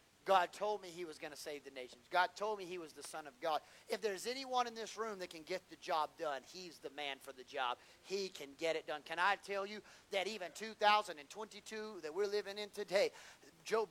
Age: 40-59